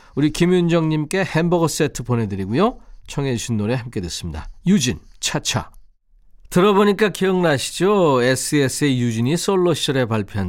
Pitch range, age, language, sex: 110-165 Hz, 40-59, Korean, male